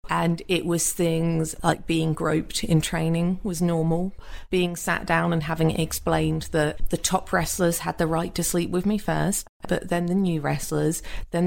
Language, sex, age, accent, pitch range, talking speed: English, female, 30-49, British, 155-180 Hz, 185 wpm